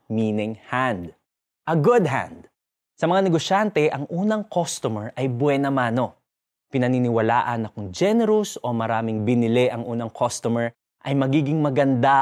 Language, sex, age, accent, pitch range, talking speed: Filipino, male, 20-39, native, 115-160 Hz, 135 wpm